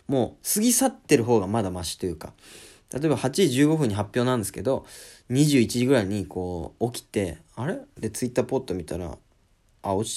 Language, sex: Japanese, male